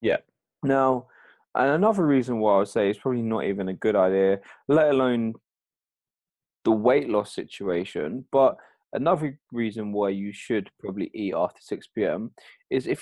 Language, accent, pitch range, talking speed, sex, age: English, British, 110-140 Hz, 155 wpm, male, 20-39